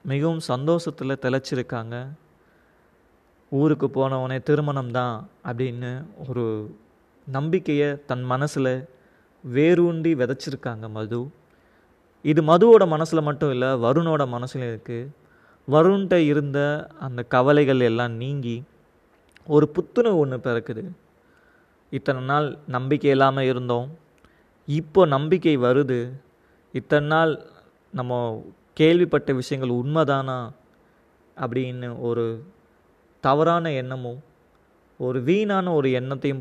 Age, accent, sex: 20-39, native, male